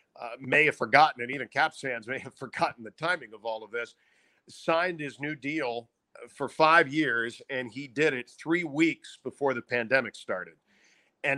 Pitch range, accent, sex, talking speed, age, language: 125-150 Hz, American, male, 185 wpm, 50-69, English